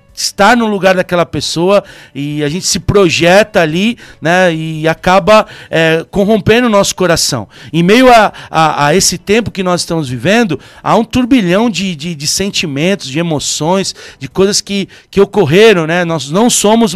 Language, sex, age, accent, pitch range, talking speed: Portuguese, male, 60-79, Brazilian, 165-210 Hz, 165 wpm